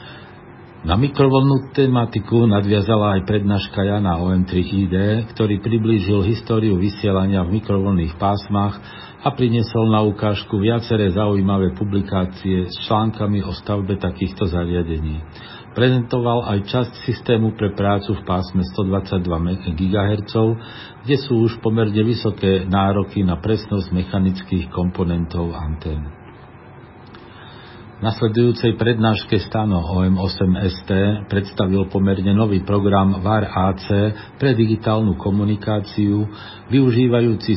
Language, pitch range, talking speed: Slovak, 95-110 Hz, 100 wpm